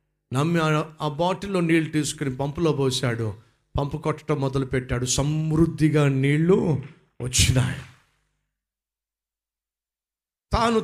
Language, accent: Telugu, native